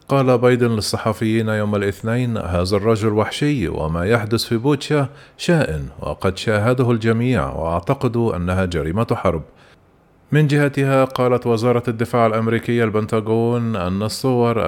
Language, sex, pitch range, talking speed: Arabic, male, 105-125 Hz, 120 wpm